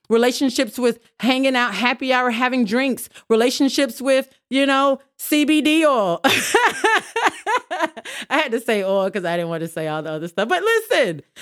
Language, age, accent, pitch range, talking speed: English, 30-49, American, 200-285 Hz, 165 wpm